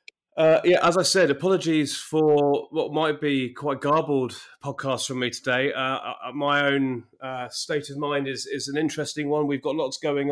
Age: 30-49